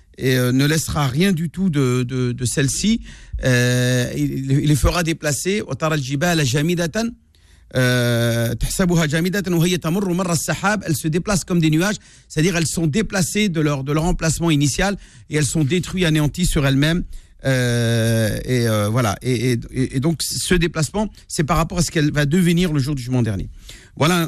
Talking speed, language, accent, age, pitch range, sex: 165 wpm, French, French, 50-69, 125-170 Hz, male